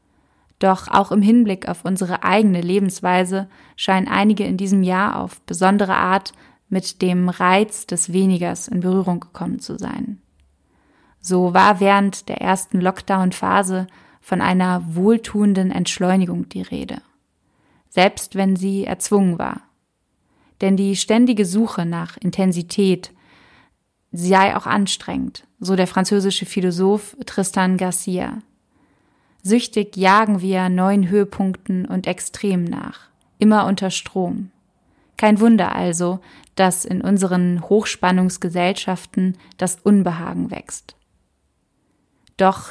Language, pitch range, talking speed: German, 185-205 Hz, 110 wpm